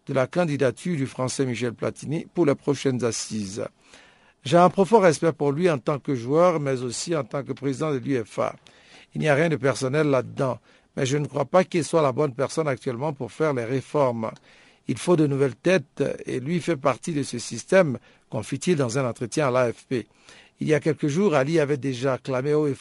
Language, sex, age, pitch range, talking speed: French, male, 60-79, 130-165 Hz, 215 wpm